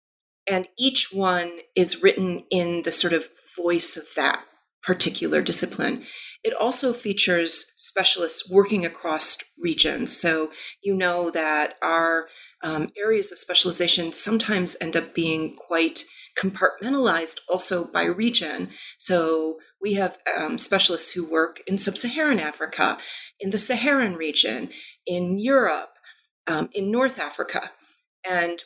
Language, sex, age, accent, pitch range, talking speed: English, female, 40-59, American, 170-240 Hz, 125 wpm